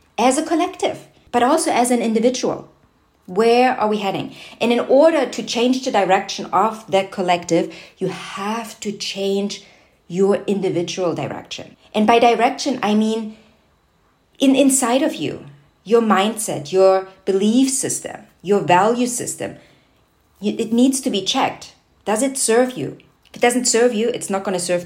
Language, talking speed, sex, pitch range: English, 155 wpm, female, 180-240 Hz